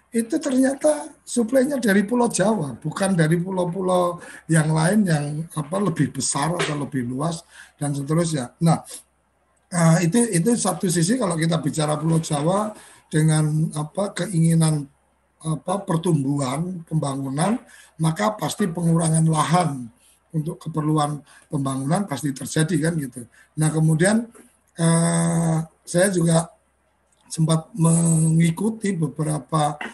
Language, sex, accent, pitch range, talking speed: Indonesian, male, native, 150-180 Hz, 110 wpm